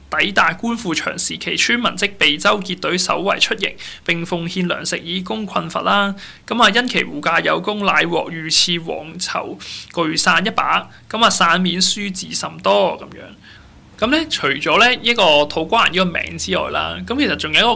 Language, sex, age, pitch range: Chinese, male, 20-39, 170-205 Hz